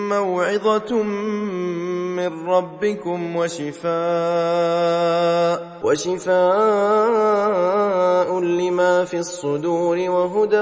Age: 20-39